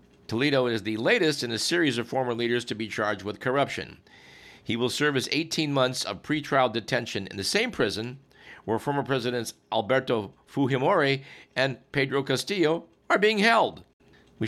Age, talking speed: 50-69, 165 wpm